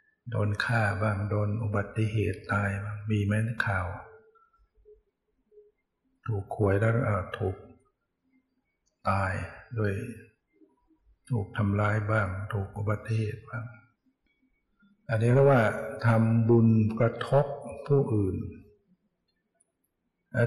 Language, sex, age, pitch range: Thai, male, 60-79, 105-135 Hz